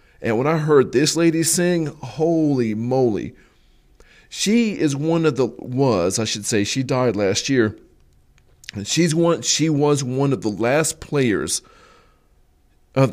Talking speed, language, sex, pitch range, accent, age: 145 wpm, English, male, 115-145 Hz, American, 40-59